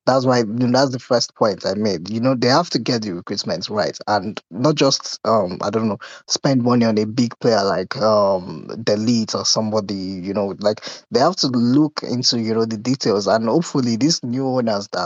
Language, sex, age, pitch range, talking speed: English, male, 10-29, 110-135 Hz, 210 wpm